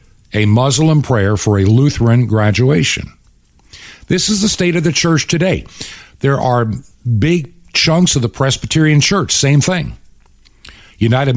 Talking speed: 135 wpm